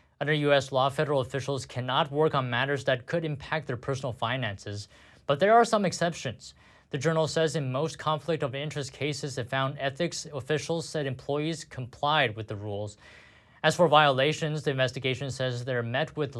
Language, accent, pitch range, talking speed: English, American, 130-165 Hz, 170 wpm